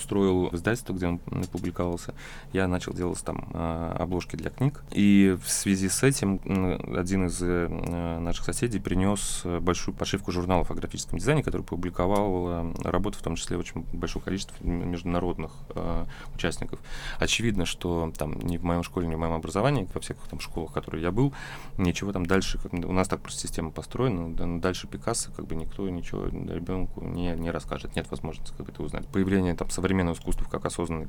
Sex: male